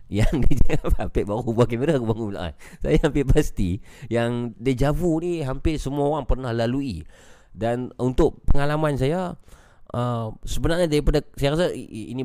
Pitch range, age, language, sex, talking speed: 95-140 Hz, 30-49, Malay, male, 140 wpm